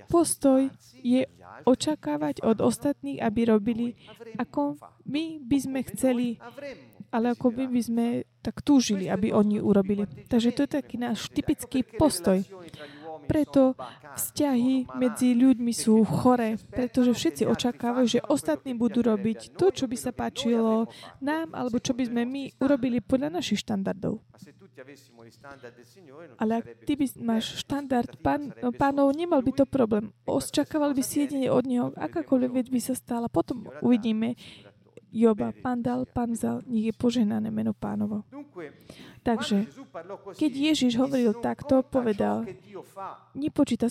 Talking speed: 135 wpm